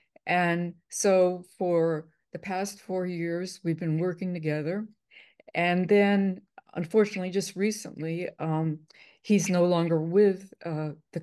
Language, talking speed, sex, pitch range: English, 125 wpm, female, 165-205 Hz